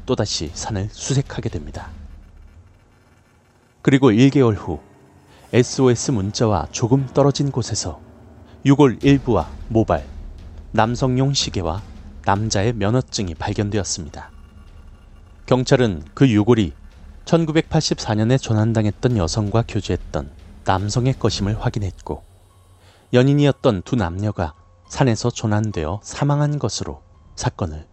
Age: 30-49